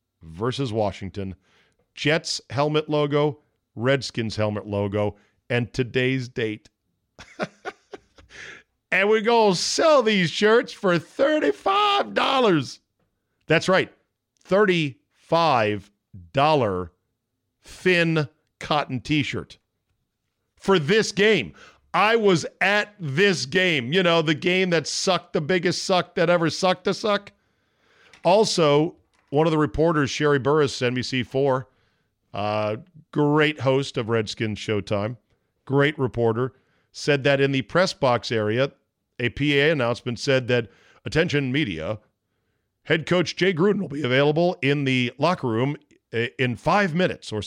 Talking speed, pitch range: 120 wpm, 110-165 Hz